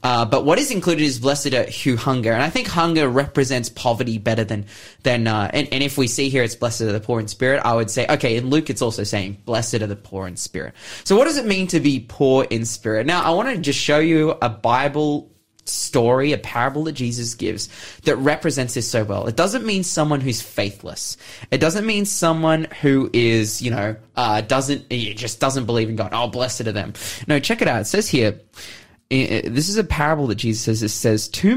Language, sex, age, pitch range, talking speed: English, male, 20-39, 110-150 Hz, 230 wpm